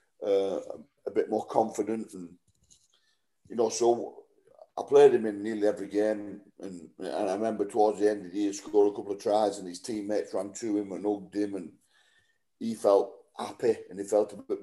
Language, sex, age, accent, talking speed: English, male, 50-69, British, 205 wpm